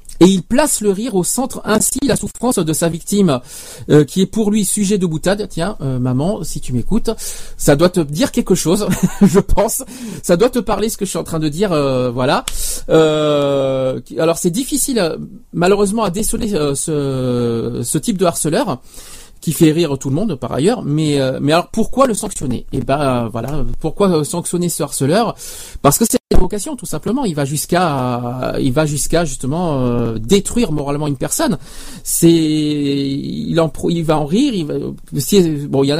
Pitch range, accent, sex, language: 145-205 Hz, French, male, French